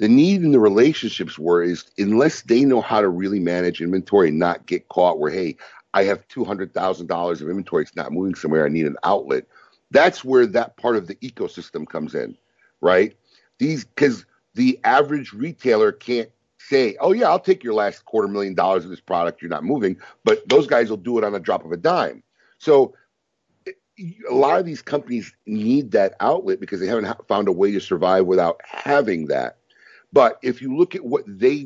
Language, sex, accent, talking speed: English, male, American, 195 wpm